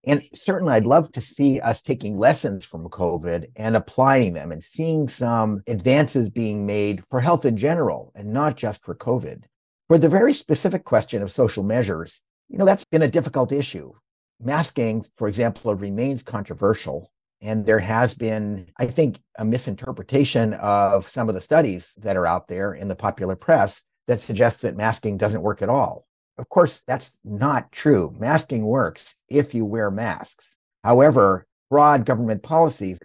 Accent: American